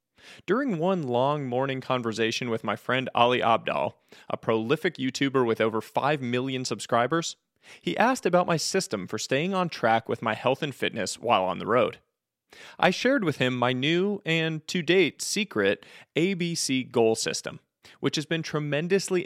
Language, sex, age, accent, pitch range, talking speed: English, male, 30-49, American, 120-175 Hz, 165 wpm